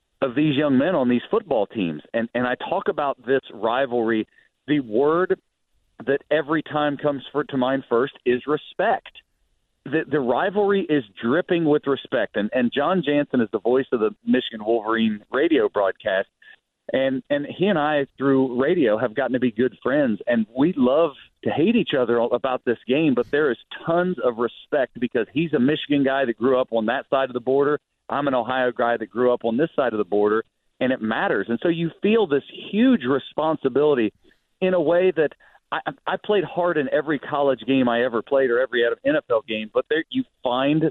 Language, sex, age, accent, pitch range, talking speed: English, male, 40-59, American, 125-175 Hz, 200 wpm